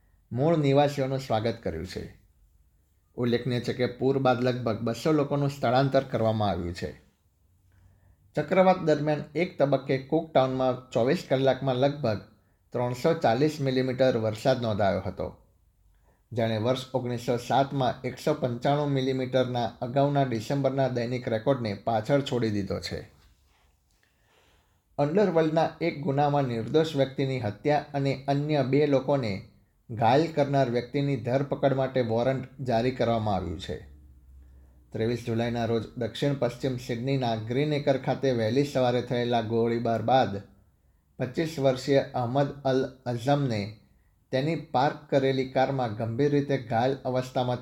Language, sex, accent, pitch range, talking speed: Gujarati, male, native, 105-140 Hz, 115 wpm